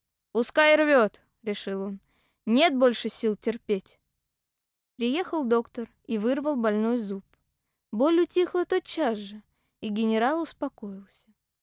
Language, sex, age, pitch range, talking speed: Russian, female, 20-39, 225-300 Hz, 110 wpm